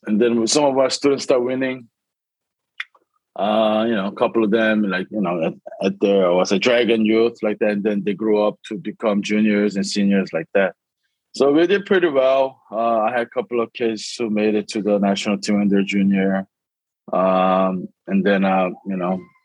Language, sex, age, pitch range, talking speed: English, male, 20-39, 100-120 Hz, 205 wpm